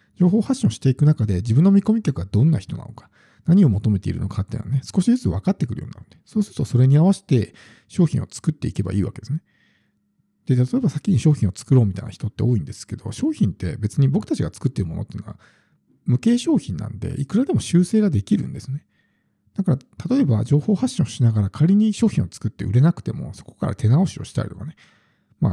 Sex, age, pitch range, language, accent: male, 50-69, 110-165 Hz, Japanese, native